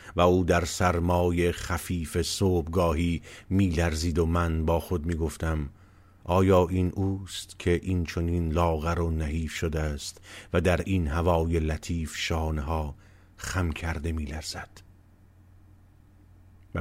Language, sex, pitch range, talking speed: Persian, male, 80-95 Hz, 120 wpm